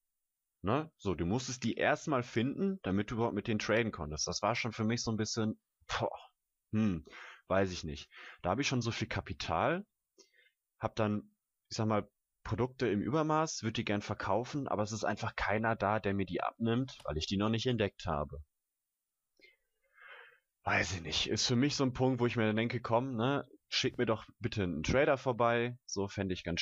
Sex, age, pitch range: male, 30-49, 95-125 Hz